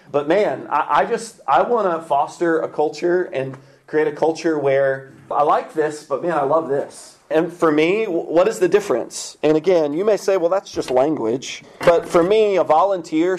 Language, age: English, 30-49